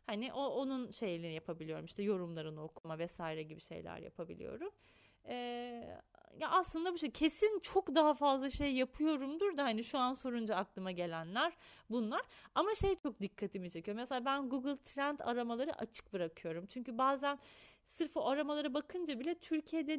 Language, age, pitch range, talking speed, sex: Turkish, 30-49, 190-270 Hz, 155 wpm, female